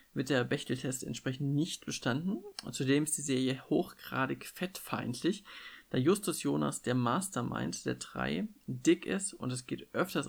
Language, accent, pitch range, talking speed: German, German, 130-160 Hz, 150 wpm